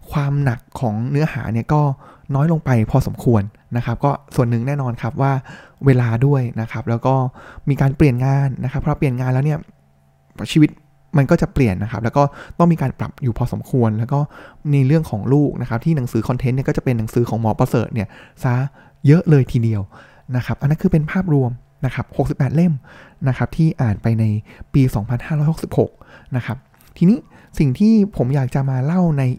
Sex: male